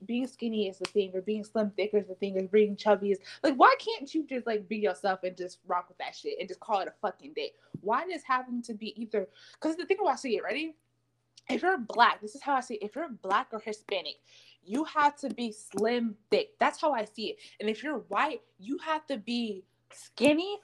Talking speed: 245 wpm